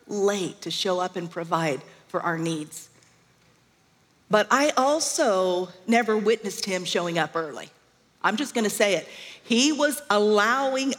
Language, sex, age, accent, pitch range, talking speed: English, female, 40-59, American, 180-235 Hz, 140 wpm